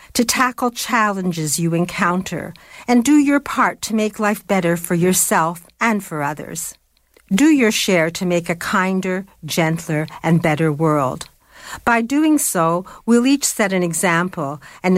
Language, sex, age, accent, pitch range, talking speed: English, female, 60-79, American, 165-215 Hz, 150 wpm